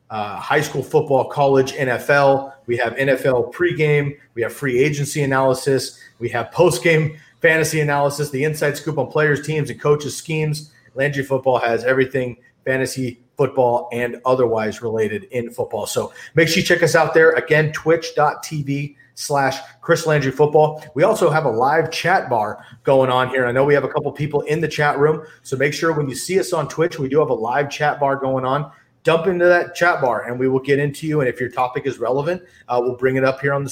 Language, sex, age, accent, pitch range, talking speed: English, male, 30-49, American, 130-155 Hz, 205 wpm